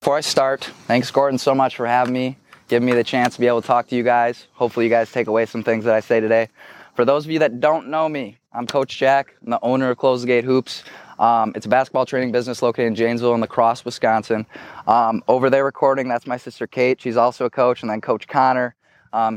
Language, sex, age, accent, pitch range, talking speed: English, male, 20-39, American, 115-130 Hz, 255 wpm